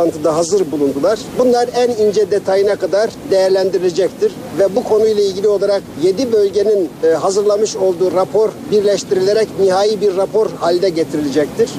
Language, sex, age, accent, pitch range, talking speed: Turkish, male, 60-79, native, 190-240 Hz, 120 wpm